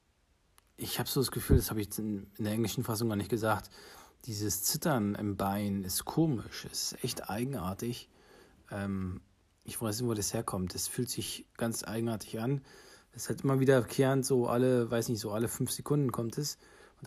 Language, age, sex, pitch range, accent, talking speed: English, 40-59, male, 105-125 Hz, German, 195 wpm